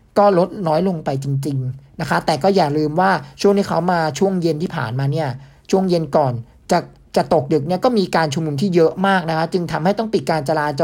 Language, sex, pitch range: Thai, male, 145-185 Hz